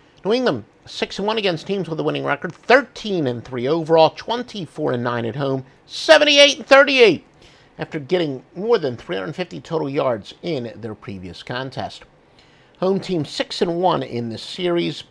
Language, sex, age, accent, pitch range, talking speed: English, male, 50-69, American, 125-185 Hz, 125 wpm